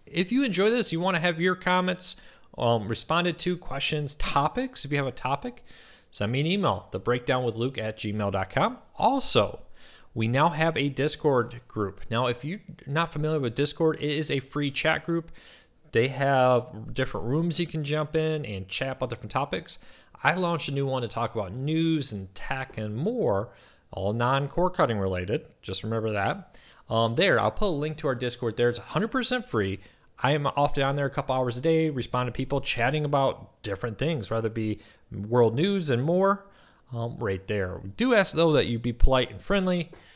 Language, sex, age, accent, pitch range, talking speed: English, male, 30-49, American, 115-160 Hz, 195 wpm